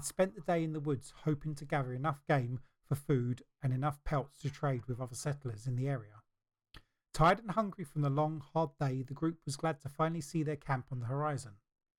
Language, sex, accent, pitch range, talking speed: English, male, British, 125-150 Hz, 220 wpm